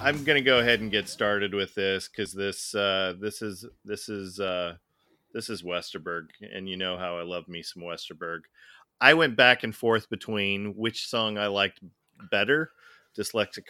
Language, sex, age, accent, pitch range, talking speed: English, male, 40-59, American, 95-120 Hz, 185 wpm